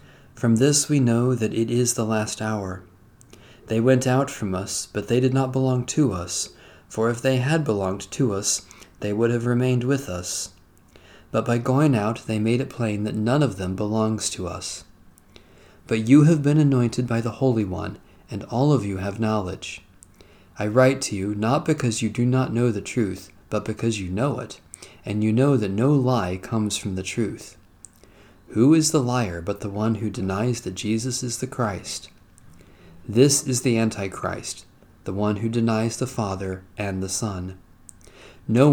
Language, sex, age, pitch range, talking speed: English, male, 40-59, 95-125 Hz, 185 wpm